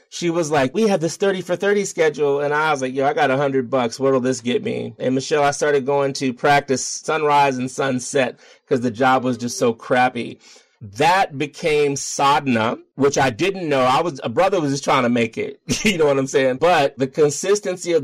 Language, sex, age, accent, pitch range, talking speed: English, male, 30-49, American, 130-155 Hz, 225 wpm